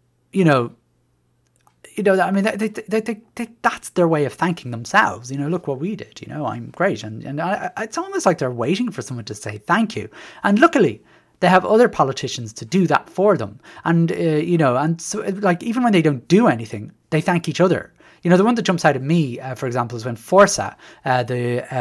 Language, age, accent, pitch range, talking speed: English, 30-49, British, 120-195 Hz, 235 wpm